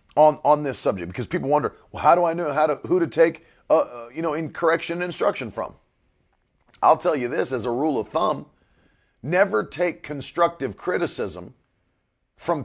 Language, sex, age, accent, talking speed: English, male, 40-59, American, 190 wpm